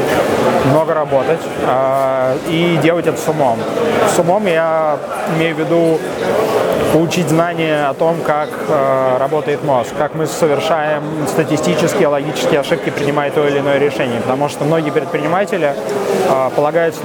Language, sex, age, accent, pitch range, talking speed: Russian, male, 20-39, native, 145-170 Hz, 135 wpm